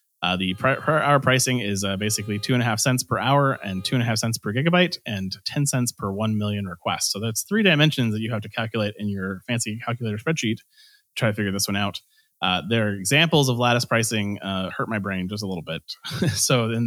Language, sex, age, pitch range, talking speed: English, male, 30-49, 100-135 Hz, 240 wpm